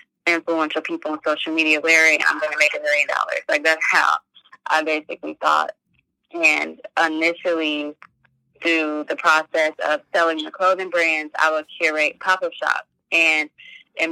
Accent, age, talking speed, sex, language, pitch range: American, 20-39, 155 wpm, female, English, 150-170 Hz